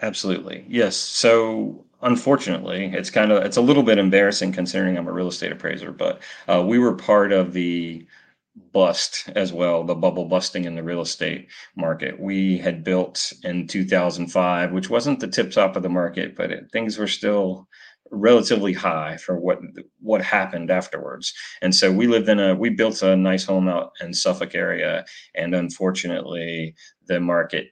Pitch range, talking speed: 85-95 Hz, 170 wpm